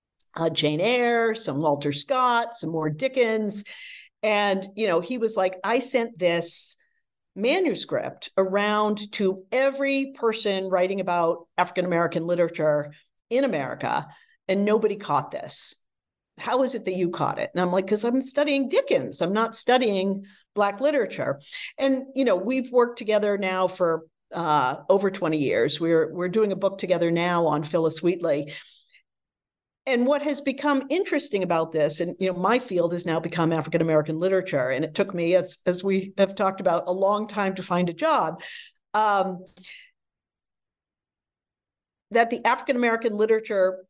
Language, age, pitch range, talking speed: English, 50-69, 175-235 Hz, 160 wpm